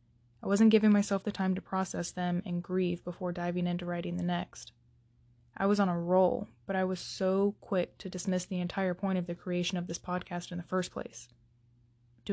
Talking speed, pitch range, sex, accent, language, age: 210 wpm, 170-190 Hz, female, American, English, 20-39